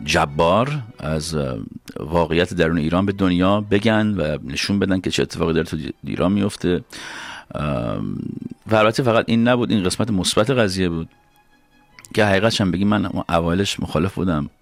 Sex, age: male, 50-69